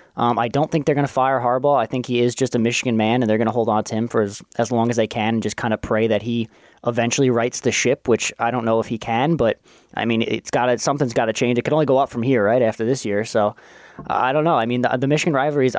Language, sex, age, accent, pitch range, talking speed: English, male, 20-39, American, 110-125 Hz, 310 wpm